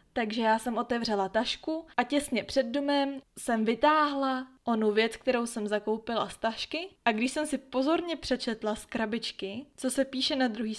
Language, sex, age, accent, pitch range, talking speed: Czech, female, 20-39, native, 220-260 Hz, 175 wpm